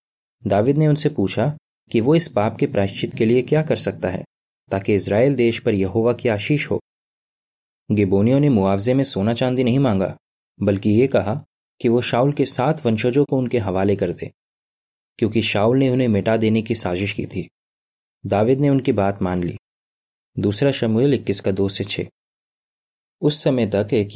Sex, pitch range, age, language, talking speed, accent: male, 100-125 Hz, 20-39, Hindi, 180 wpm, native